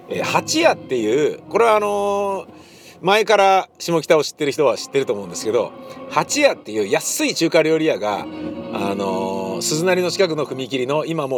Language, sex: Japanese, male